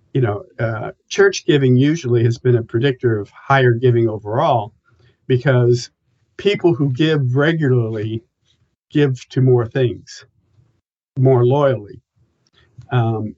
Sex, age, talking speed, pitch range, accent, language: male, 50-69, 115 wpm, 115-130 Hz, American, English